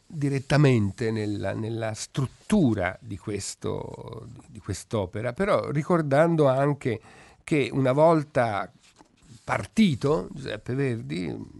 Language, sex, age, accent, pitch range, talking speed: Italian, male, 50-69, native, 110-135 Hz, 90 wpm